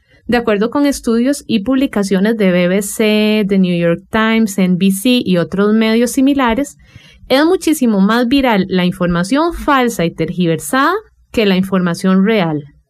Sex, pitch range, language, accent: female, 190-260 Hz, English, Colombian